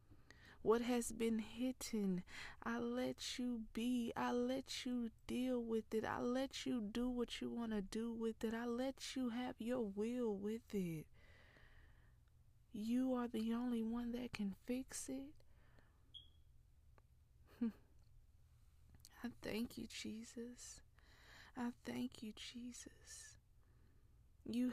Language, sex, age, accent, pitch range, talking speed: English, female, 20-39, American, 215-245 Hz, 125 wpm